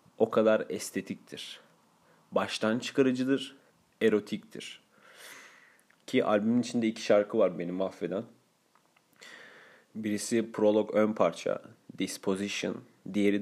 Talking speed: 90 wpm